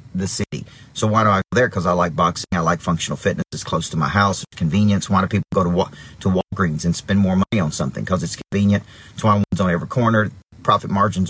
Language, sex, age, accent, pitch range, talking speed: English, male, 40-59, American, 100-140 Hz, 255 wpm